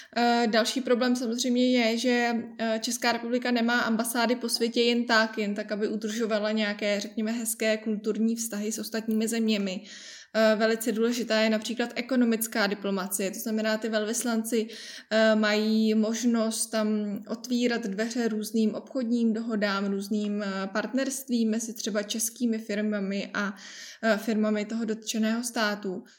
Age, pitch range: 20-39, 220-240 Hz